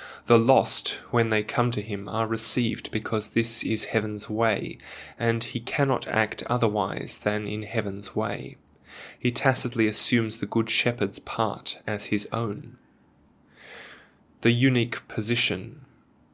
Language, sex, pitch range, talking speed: English, male, 105-120 Hz, 130 wpm